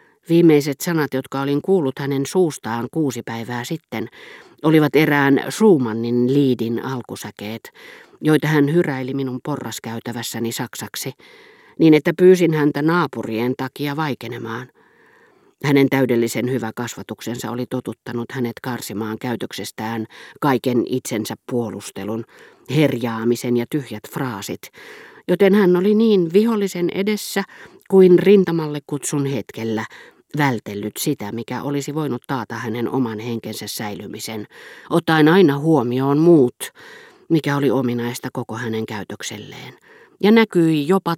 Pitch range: 115-165 Hz